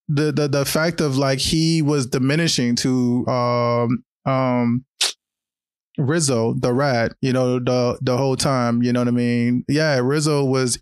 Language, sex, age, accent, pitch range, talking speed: English, male, 20-39, American, 125-150 Hz, 160 wpm